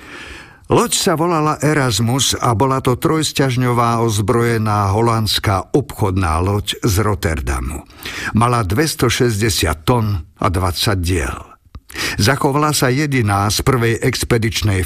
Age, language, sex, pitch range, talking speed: 50-69, Slovak, male, 105-130 Hz, 105 wpm